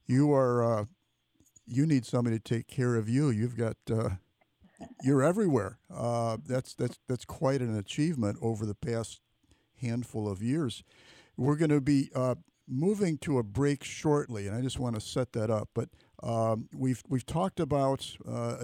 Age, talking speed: 50-69, 175 wpm